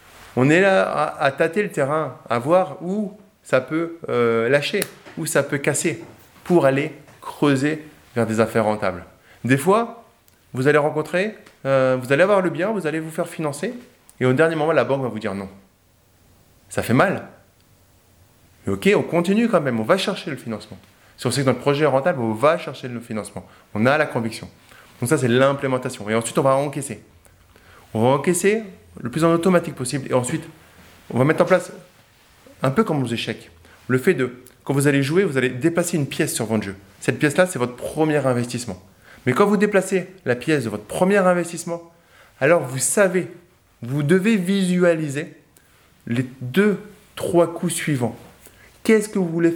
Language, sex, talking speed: French, male, 190 wpm